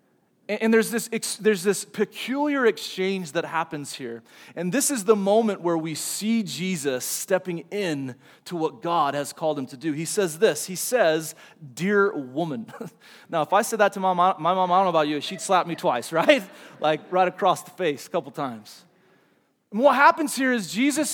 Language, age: English, 30-49